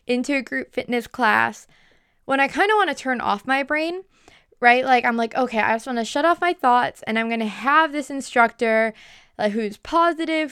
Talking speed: 215 wpm